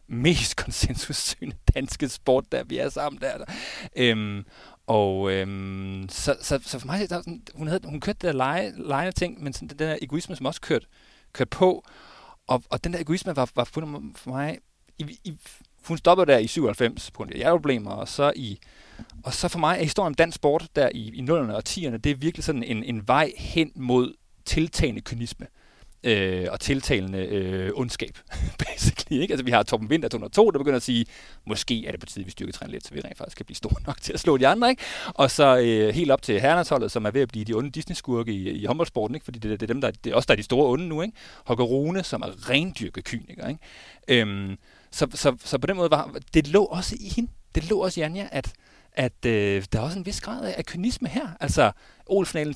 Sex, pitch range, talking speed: male, 115-170 Hz, 225 wpm